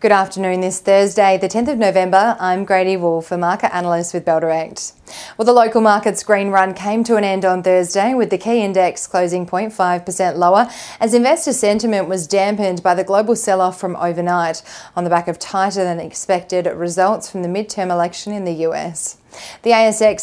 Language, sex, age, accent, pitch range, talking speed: English, female, 20-39, Australian, 180-210 Hz, 185 wpm